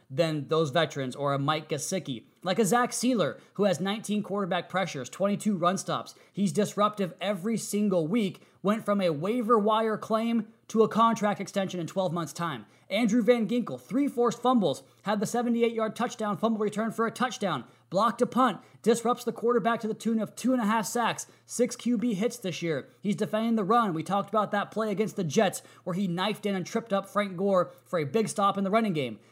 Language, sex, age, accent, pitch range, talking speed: English, male, 20-39, American, 170-225 Hz, 210 wpm